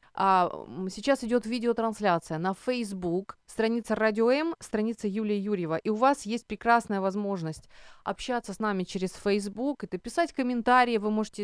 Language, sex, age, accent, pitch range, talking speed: Ukrainian, female, 30-49, native, 185-245 Hz, 140 wpm